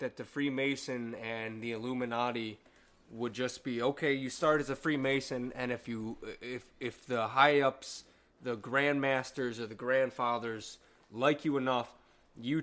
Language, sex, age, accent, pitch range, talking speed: English, male, 20-39, American, 120-150 Hz, 145 wpm